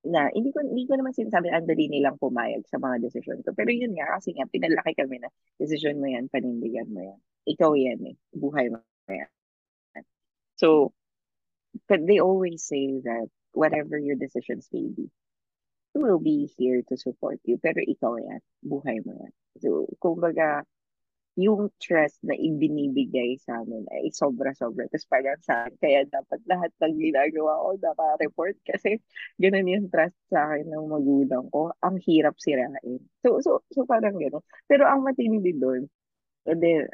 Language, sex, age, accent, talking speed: Filipino, female, 20-39, native, 165 wpm